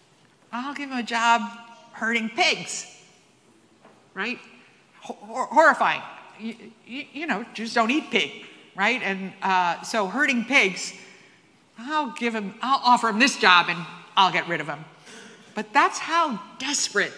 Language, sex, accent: English, female, American